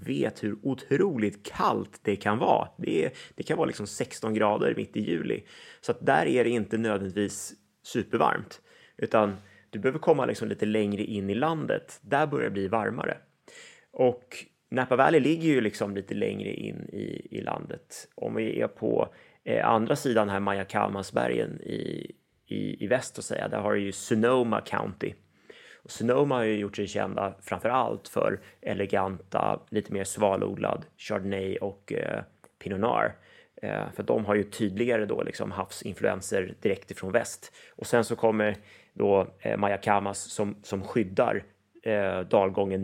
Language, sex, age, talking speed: Swedish, male, 30-49, 160 wpm